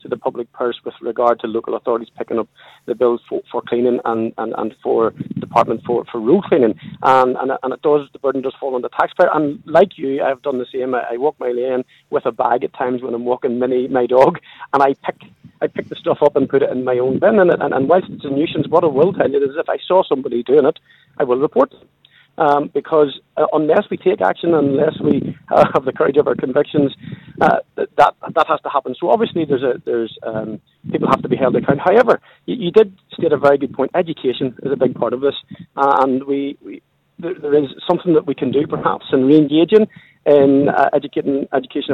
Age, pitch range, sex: 40-59, 130-165 Hz, male